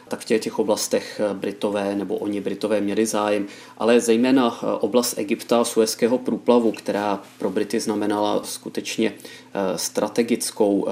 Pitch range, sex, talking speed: 100-110 Hz, male, 125 wpm